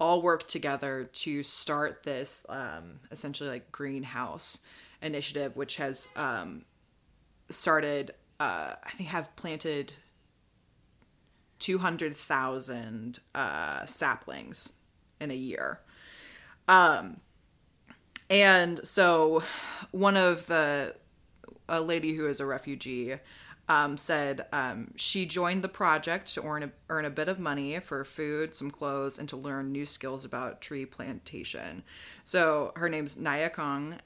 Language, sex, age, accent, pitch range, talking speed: English, female, 20-39, American, 140-170 Hz, 120 wpm